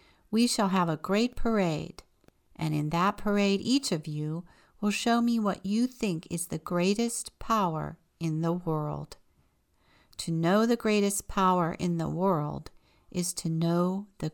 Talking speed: 160 wpm